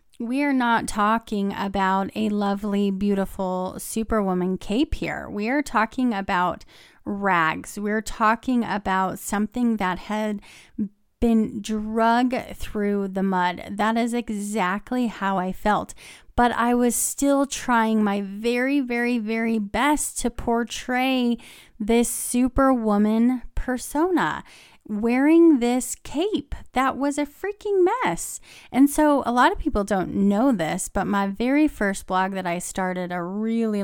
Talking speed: 135 wpm